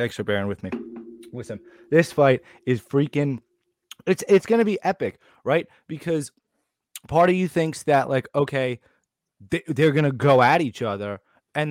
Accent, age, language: American, 20-39, English